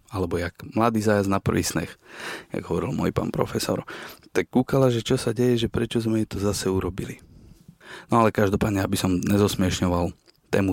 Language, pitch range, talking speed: Slovak, 95-120 Hz, 175 wpm